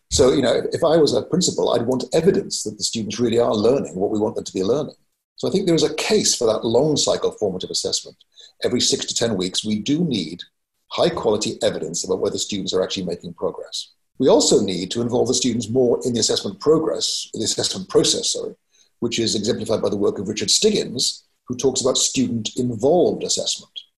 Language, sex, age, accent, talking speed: English, male, 50-69, British, 215 wpm